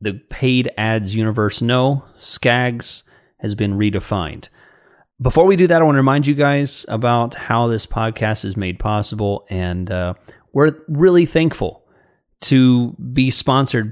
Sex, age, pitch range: male, 30-49, 105-135 Hz